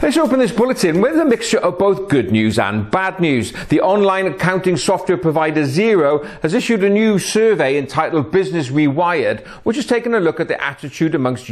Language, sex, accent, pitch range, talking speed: English, male, British, 140-200 Hz, 195 wpm